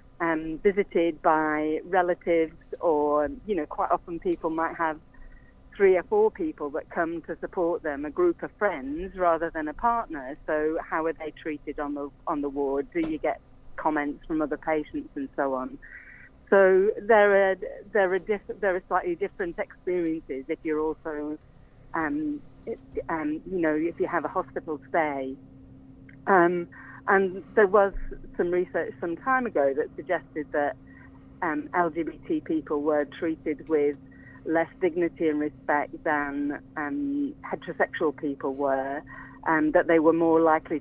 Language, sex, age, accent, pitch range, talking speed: English, female, 40-59, British, 150-190 Hz, 160 wpm